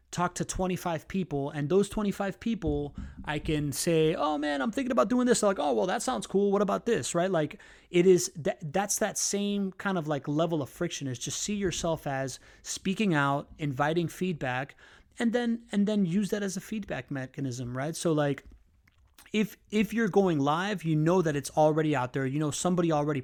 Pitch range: 145-190 Hz